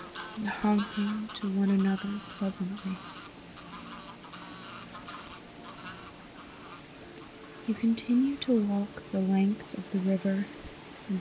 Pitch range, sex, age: 185-210 Hz, female, 30-49